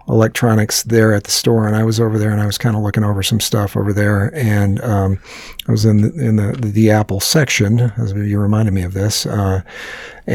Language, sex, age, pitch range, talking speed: English, male, 50-69, 105-120 Hz, 230 wpm